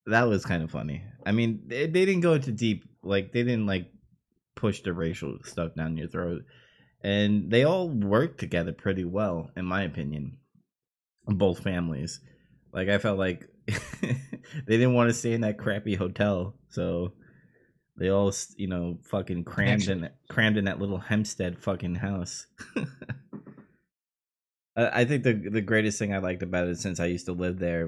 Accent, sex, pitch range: American, male, 90-125 Hz